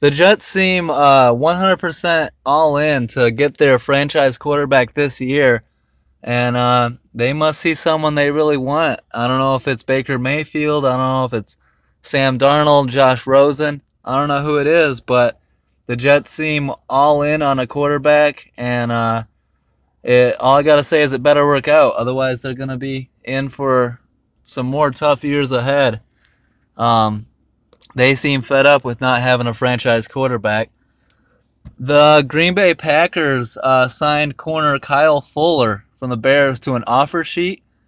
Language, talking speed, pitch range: English, 165 wpm, 125-150 Hz